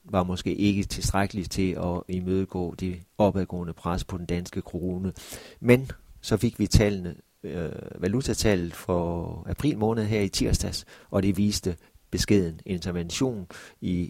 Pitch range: 90-100 Hz